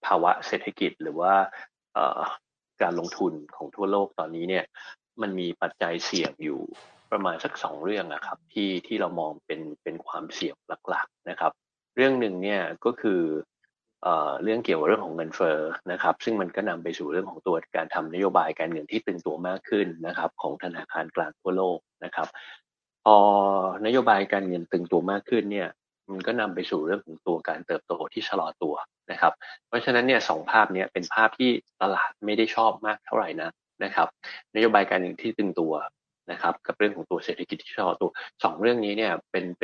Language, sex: Thai, male